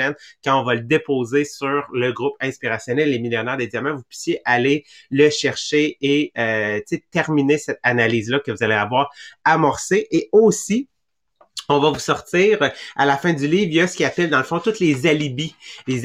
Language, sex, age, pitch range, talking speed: English, male, 30-49, 115-145 Hz, 195 wpm